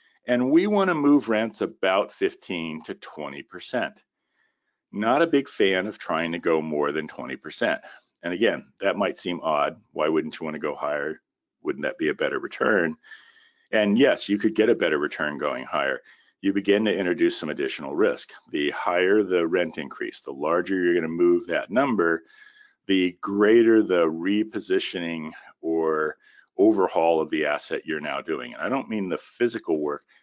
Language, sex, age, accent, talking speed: English, male, 50-69, American, 175 wpm